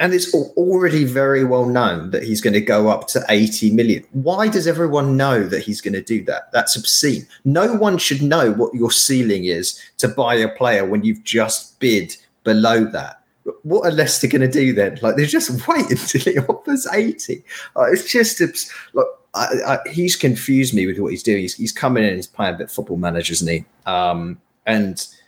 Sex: male